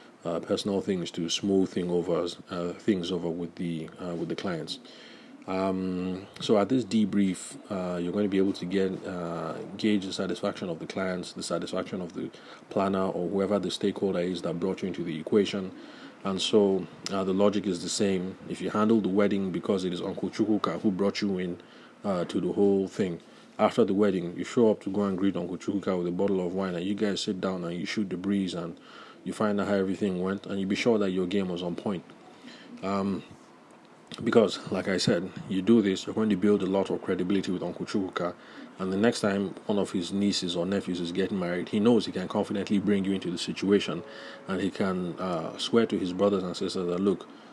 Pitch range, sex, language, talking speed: 90-100 Hz, male, English, 225 wpm